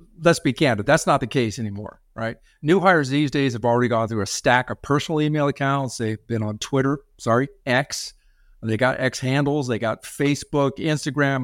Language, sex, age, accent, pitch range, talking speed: English, male, 50-69, American, 120-165 Hz, 195 wpm